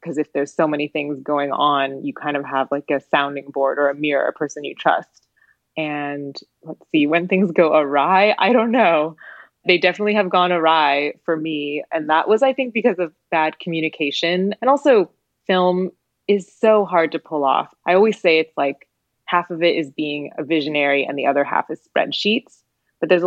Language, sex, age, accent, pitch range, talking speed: English, female, 20-39, American, 145-180 Hz, 200 wpm